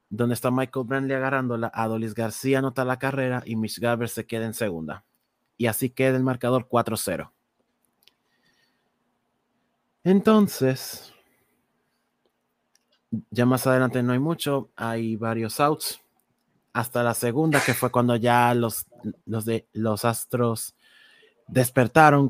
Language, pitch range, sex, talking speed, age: Spanish, 115-130 Hz, male, 125 wpm, 30-49